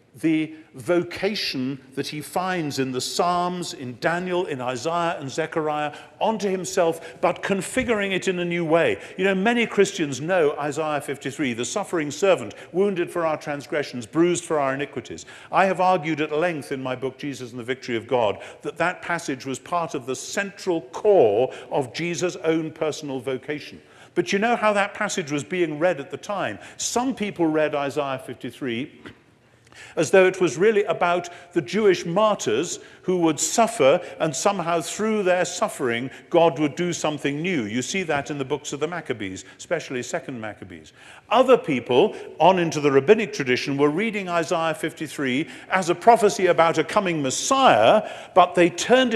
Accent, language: British, English